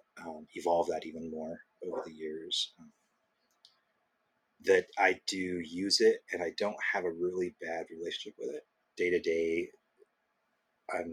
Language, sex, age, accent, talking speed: English, male, 30-49, American, 150 wpm